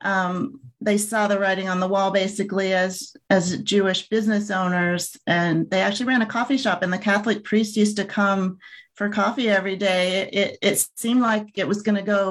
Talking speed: 205 wpm